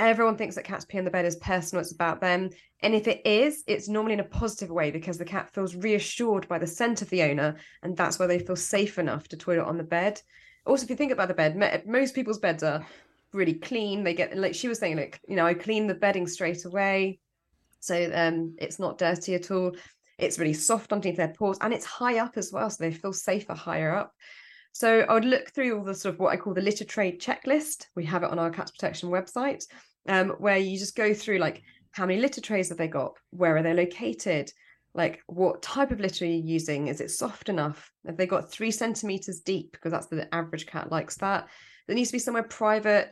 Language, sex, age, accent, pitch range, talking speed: English, female, 20-39, British, 170-210 Hz, 240 wpm